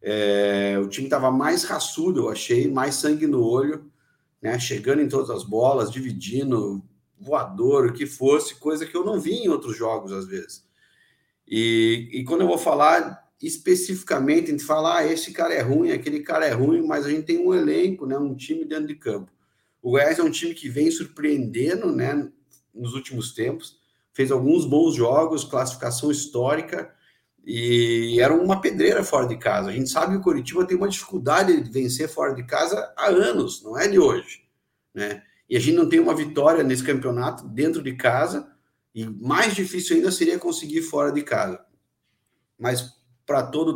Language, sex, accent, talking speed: Portuguese, male, Brazilian, 185 wpm